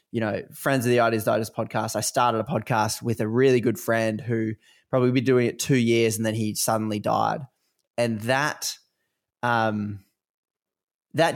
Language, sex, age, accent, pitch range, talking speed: English, male, 20-39, Australian, 115-135 Hz, 180 wpm